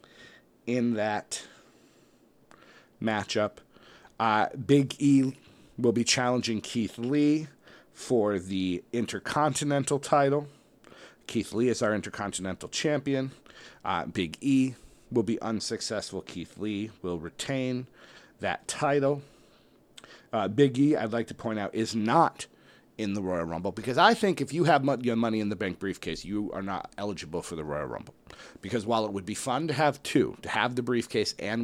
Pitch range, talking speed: 105-130 Hz, 155 wpm